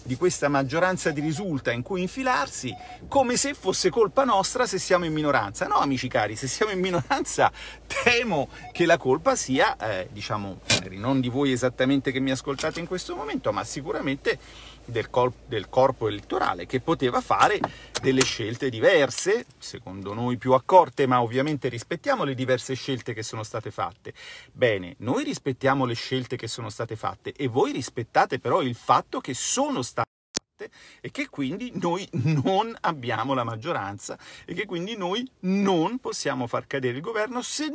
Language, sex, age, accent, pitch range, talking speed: Italian, male, 40-59, native, 125-185 Hz, 165 wpm